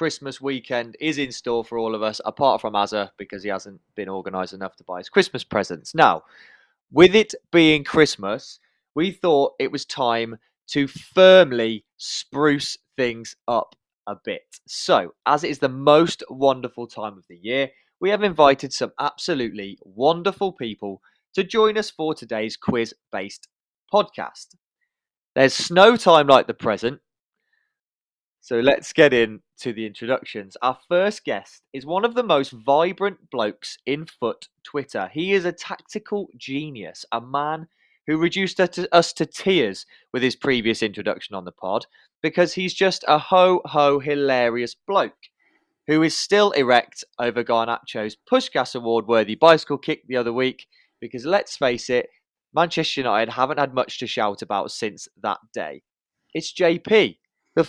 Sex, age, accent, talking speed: male, 20-39, British, 155 wpm